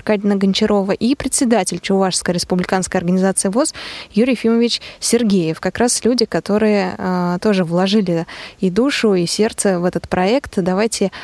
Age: 20-39